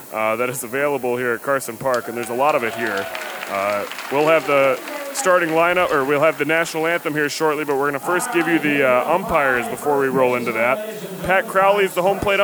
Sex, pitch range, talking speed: male, 145-190 Hz, 240 wpm